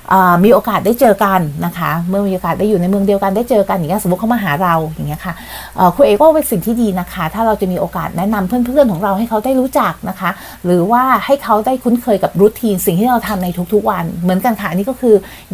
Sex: female